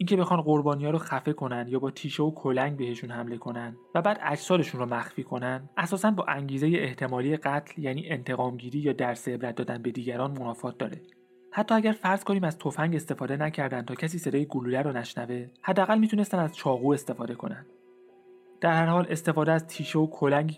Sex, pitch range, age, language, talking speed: male, 125-170 Hz, 30-49, Persian, 185 wpm